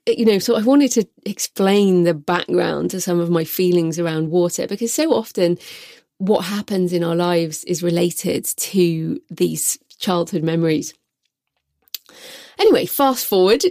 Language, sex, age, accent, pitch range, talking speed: English, female, 30-49, British, 175-215 Hz, 145 wpm